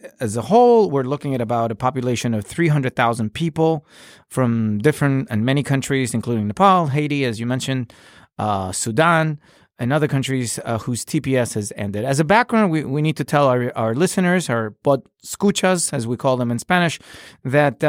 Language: Spanish